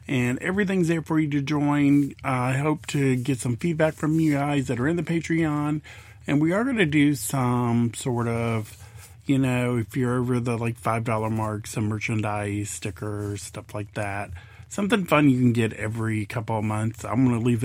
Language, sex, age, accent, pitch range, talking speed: English, male, 40-59, American, 115-155 Hz, 200 wpm